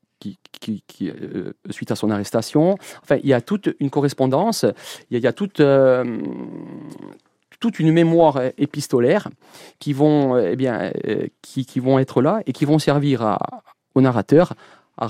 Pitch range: 115-145 Hz